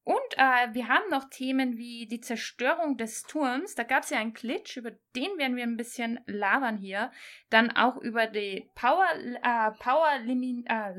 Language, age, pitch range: German, 20-39, 225-285 Hz